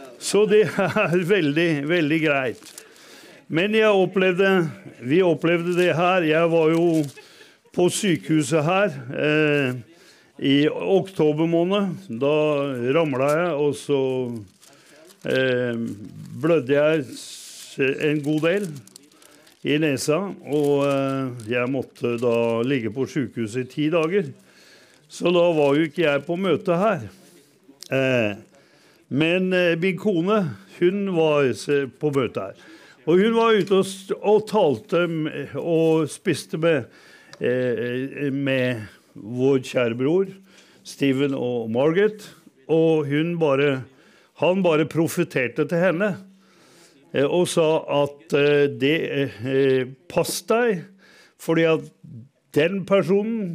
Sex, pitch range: male, 135-175 Hz